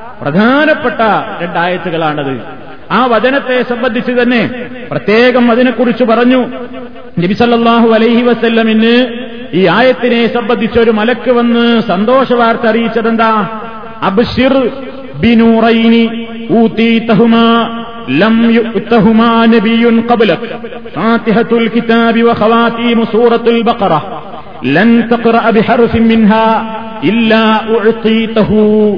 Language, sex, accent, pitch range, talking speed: Malayalam, male, native, 225-240 Hz, 40 wpm